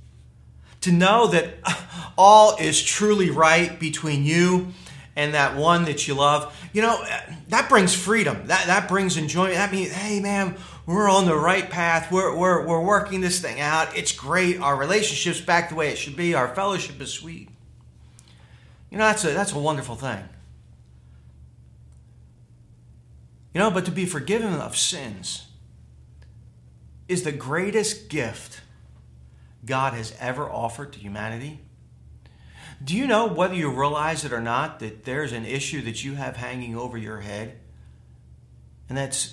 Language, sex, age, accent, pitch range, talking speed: English, male, 30-49, American, 105-175 Hz, 155 wpm